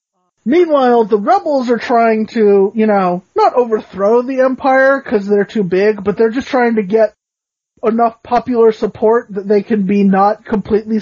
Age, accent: 30-49, American